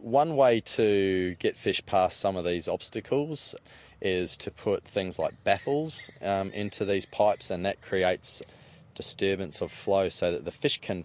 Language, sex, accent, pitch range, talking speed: English, male, Australian, 95-115 Hz, 170 wpm